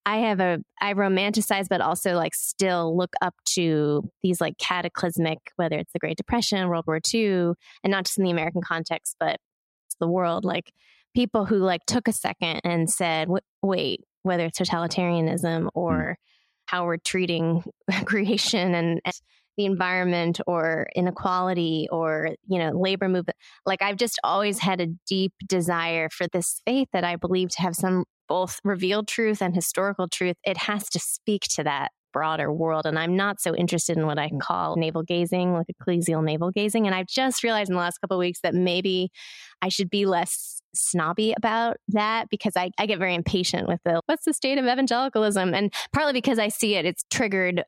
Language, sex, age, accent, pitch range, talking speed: English, female, 20-39, American, 170-200 Hz, 190 wpm